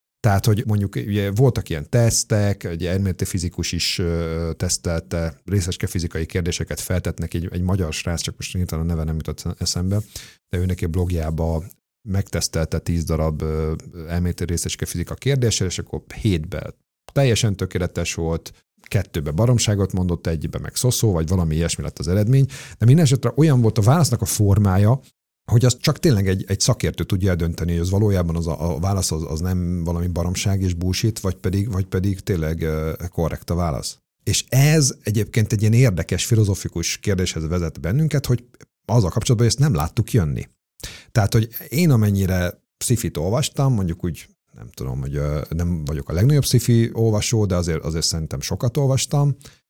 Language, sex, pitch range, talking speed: Hungarian, male, 85-115 Hz, 165 wpm